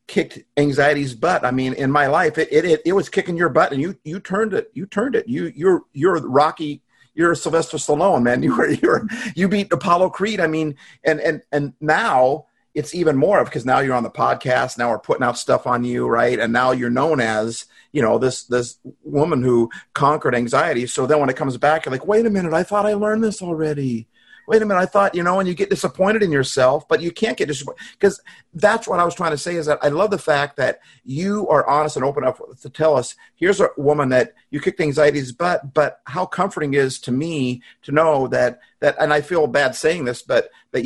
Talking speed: 235 wpm